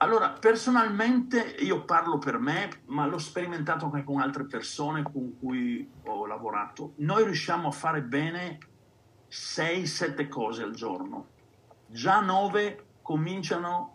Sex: male